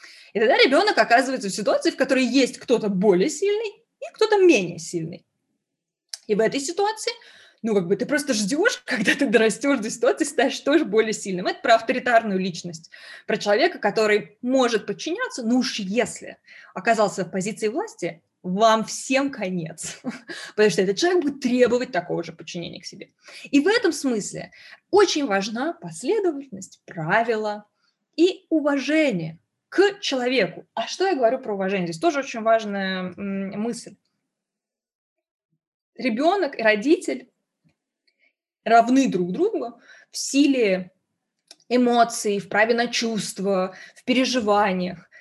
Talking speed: 135 wpm